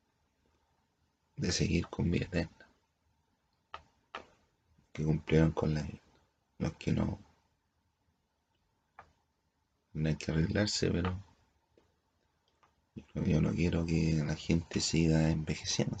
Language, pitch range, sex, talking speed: Spanish, 80-95 Hz, male, 105 wpm